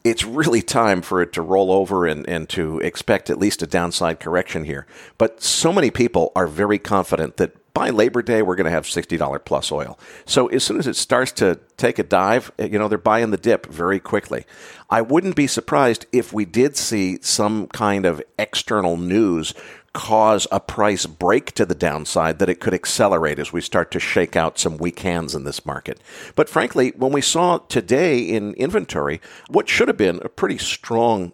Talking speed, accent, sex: 200 wpm, American, male